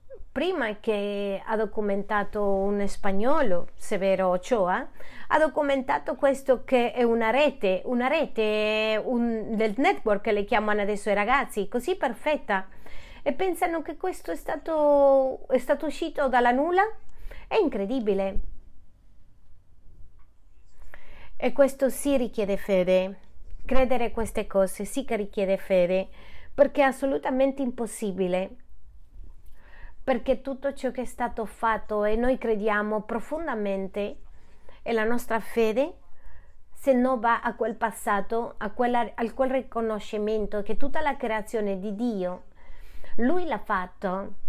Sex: female